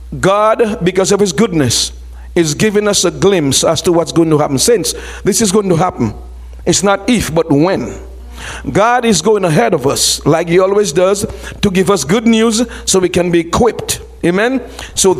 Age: 50-69